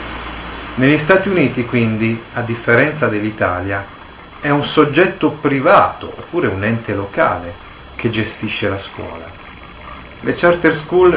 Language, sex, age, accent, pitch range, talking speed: Italian, male, 30-49, native, 105-135 Hz, 120 wpm